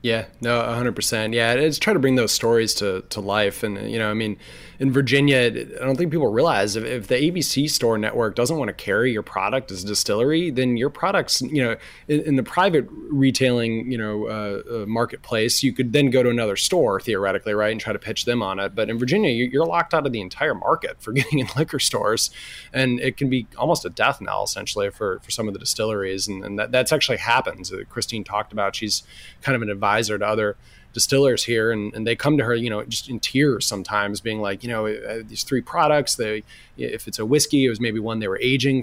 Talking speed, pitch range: 230 wpm, 105-130 Hz